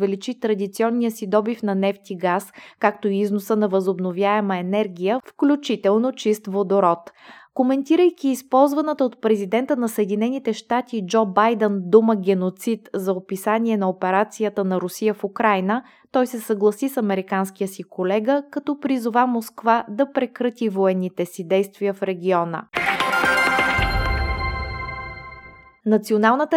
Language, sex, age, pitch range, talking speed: Bulgarian, female, 20-39, 195-240 Hz, 120 wpm